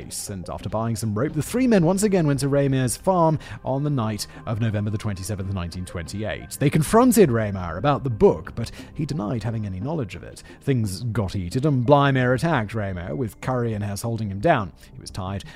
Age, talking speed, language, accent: 30-49, 205 wpm, English, British